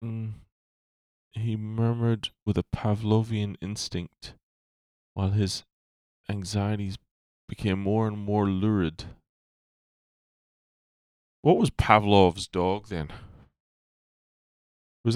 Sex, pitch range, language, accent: male, 95-125 Hz, English, American